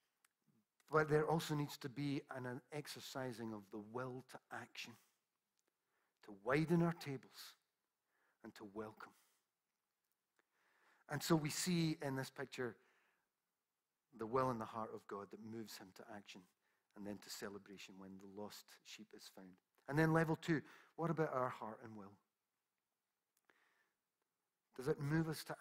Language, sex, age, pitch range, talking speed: English, male, 50-69, 115-160 Hz, 150 wpm